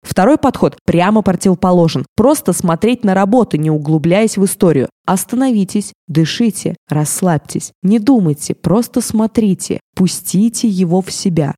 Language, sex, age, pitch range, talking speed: Russian, female, 20-39, 165-220 Hz, 120 wpm